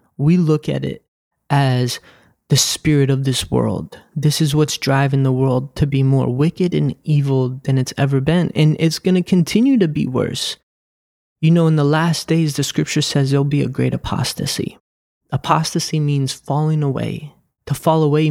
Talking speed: 180 wpm